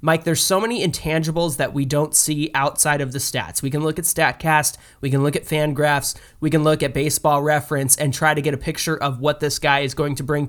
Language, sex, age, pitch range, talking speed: English, male, 20-39, 135-165 Hz, 250 wpm